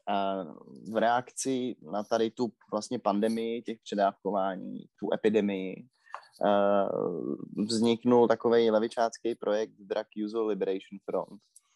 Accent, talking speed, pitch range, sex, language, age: native, 100 wpm, 105-120 Hz, male, Czech, 20-39